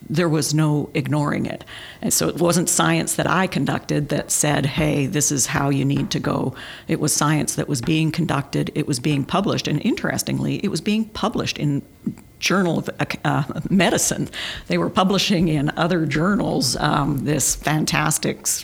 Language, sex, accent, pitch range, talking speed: English, female, American, 145-165 Hz, 170 wpm